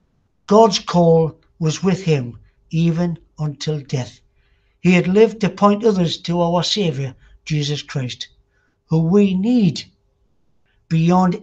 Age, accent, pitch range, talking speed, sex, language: 60-79, British, 155-215 Hz, 120 wpm, male, English